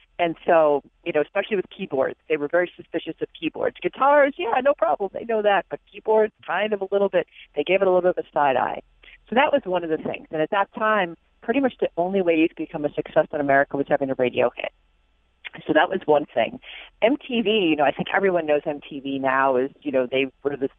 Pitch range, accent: 145-190 Hz, American